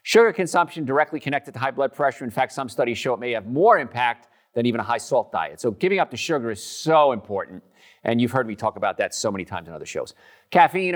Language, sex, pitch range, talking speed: English, male, 120-180 Hz, 245 wpm